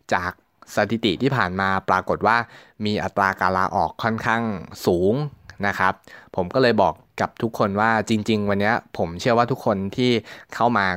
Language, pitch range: Thai, 95-115 Hz